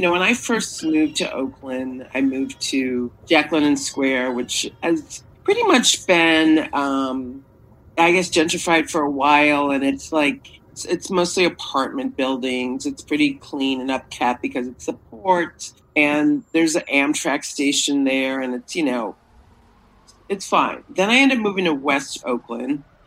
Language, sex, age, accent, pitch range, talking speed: English, female, 40-59, American, 135-210 Hz, 165 wpm